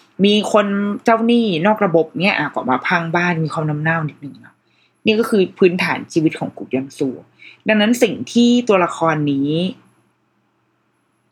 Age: 20-39